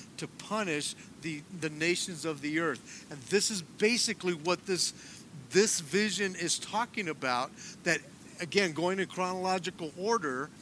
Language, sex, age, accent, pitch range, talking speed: English, male, 50-69, American, 160-200 Hz, 140 wpm